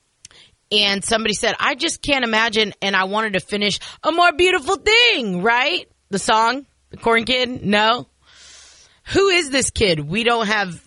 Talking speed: 165 wpm